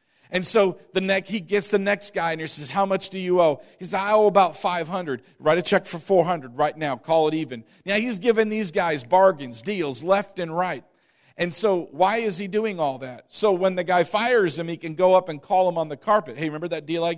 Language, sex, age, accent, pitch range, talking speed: English, male, 50-69, American, 145-195 Hz, 250 wpm